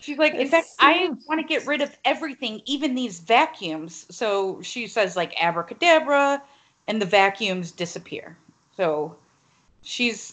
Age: 30-49